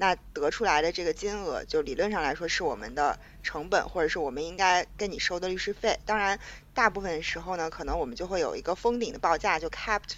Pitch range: 175-235 Hz